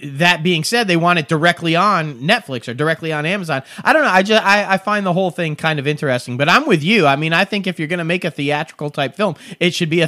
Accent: American